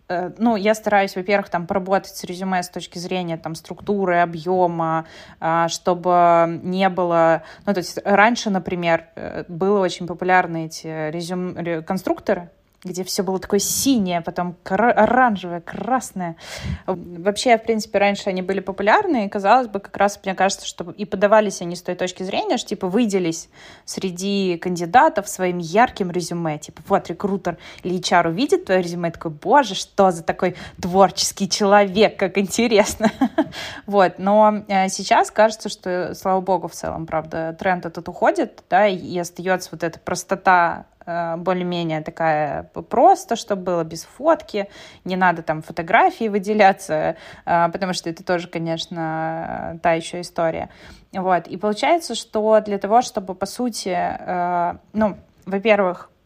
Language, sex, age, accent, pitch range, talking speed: Russian, female, 20-39, native, 175-205 Hz, 140 wpm